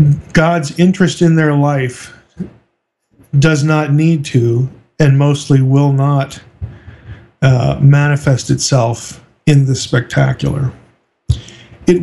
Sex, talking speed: male, 100 wpm